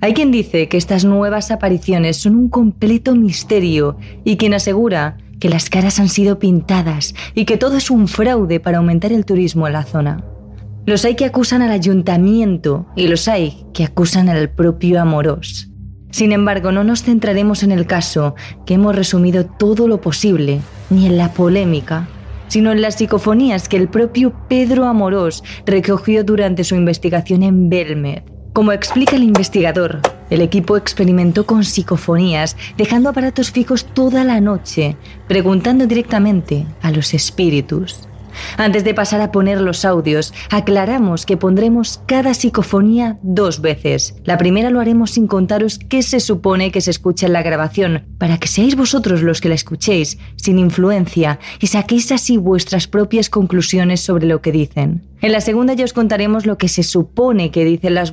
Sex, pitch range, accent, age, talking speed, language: female, 165-215 Hz, Spanish, 20-39, 165 wpm, Spanish